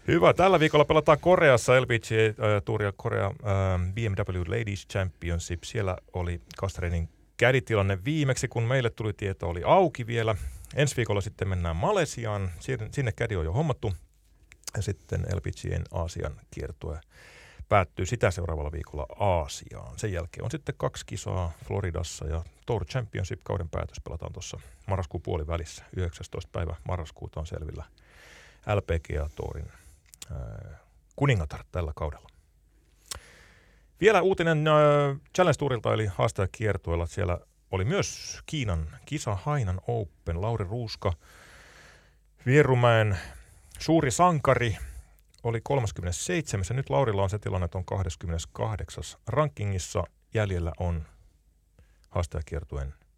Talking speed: 115 wpm